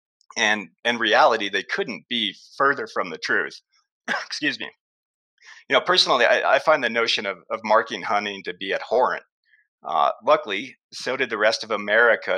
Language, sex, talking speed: English, male, 170 wpm